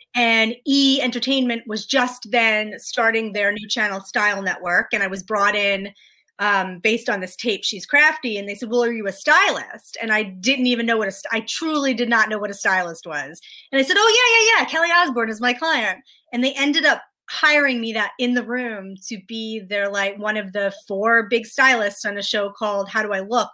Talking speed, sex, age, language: 225 wpm, female, 30-49, English